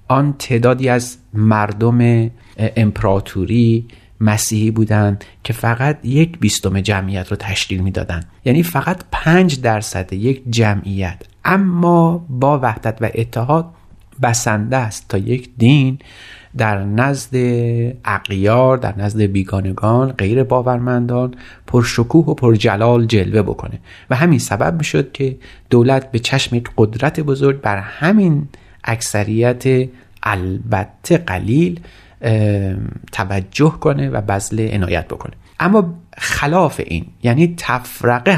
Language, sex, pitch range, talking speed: Persian, male, 105-130 Hz, 110 wpm